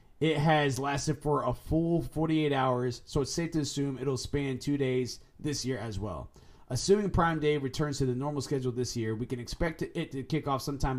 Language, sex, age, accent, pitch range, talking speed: English, male, 30-49, American, 125-155 Hz, 215 wpm